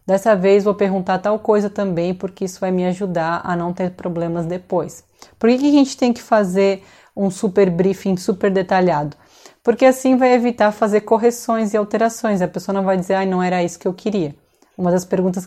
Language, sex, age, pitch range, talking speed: Portuguese, female, 20-39, 180-225 Hz, 200 wpm